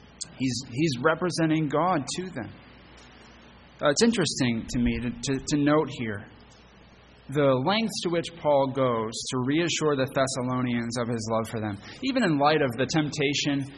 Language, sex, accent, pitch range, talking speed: English, male, American, 130-160 Hz, 160 wpm